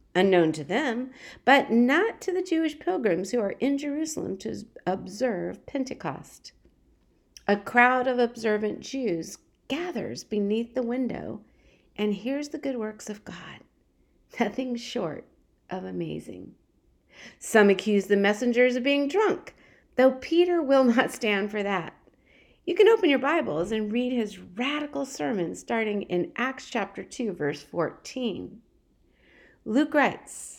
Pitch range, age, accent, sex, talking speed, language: 200-275 Hz, 50-69, American, female, 135 wpm, English